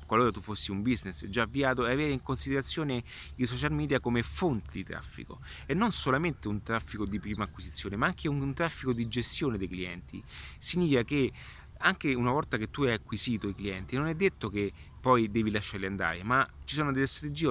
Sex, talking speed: male, 200 wpm